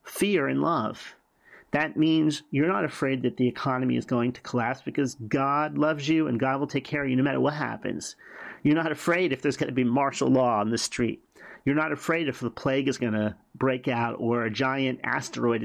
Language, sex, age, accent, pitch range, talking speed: English, male, 40-59, American, 125-150 Hz, 220 wpm